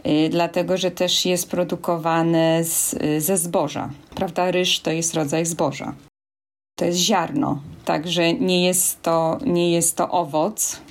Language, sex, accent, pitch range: Polish, female, native, 155-180 Hz